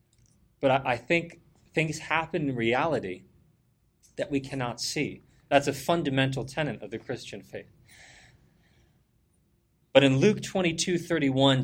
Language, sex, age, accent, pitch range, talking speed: English, male, 30-49, American, 125-170 Hz, 125 wpm